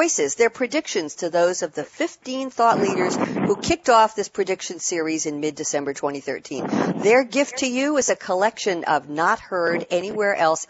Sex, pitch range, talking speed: female, 170-235 Hz, 150 wpm